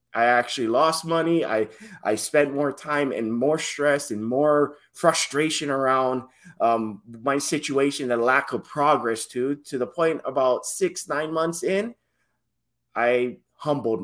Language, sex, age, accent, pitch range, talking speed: English, male, 30-49, American, 115-145 Hz, 145 wpm